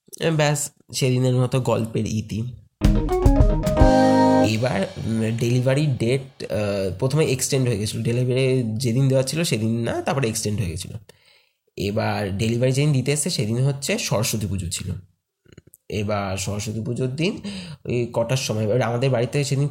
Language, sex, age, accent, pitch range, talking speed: Bengali, male, 20-39, native, 110-150 Hz, 105 wpm